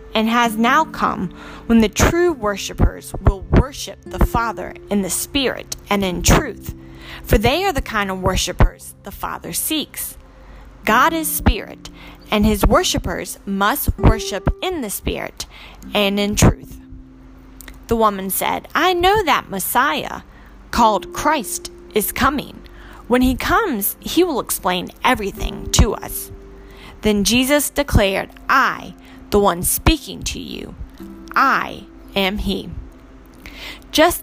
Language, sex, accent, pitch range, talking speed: English, female, American, 190-300 Hz, 130 wpm